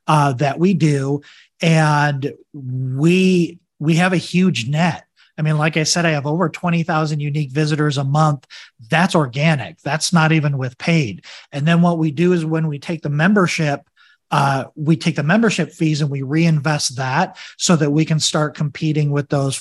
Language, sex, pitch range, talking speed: English, male, 140-165 Hz, 185 wpm